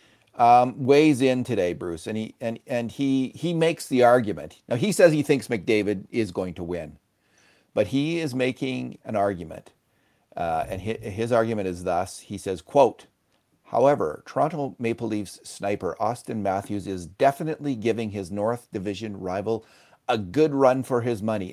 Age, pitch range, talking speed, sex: 50-69, 100-135 Hz, 165 wpm, male